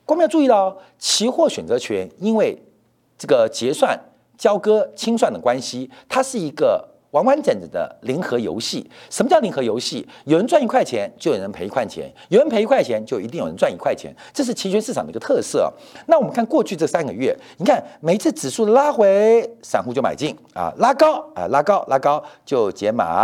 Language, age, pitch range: Chinese, 50-69, 195-315 Hz